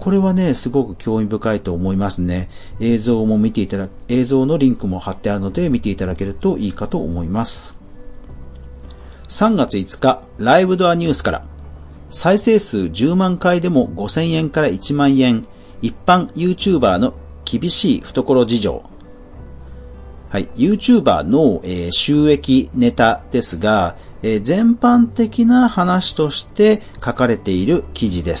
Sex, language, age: male, Japanese, 40-59